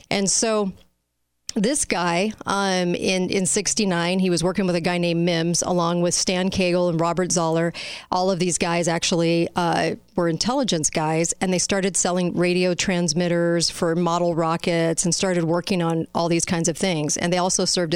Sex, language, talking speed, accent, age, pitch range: female, English, 180 wpm, American, 40-59, 170-195 Hz